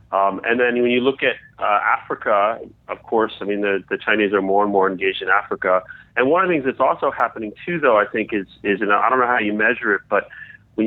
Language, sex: English, male